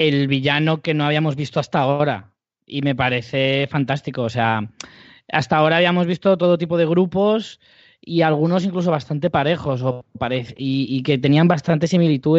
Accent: Spanish